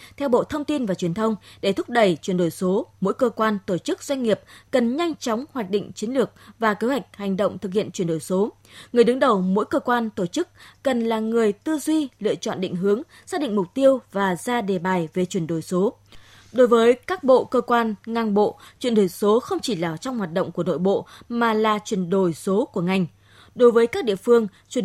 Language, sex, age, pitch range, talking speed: Vietnamese, female, 20-39, 190-245 Hz, 240 wpm